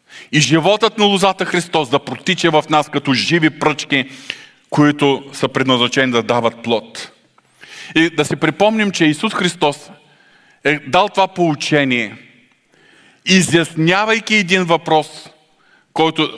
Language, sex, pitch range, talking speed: Bulgarian, male, 130-165 Hz, 120 wpm